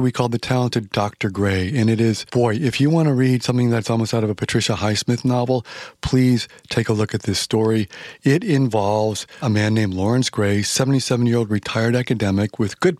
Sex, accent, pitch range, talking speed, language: male, American, 110-140 Hz, 200 wpm, English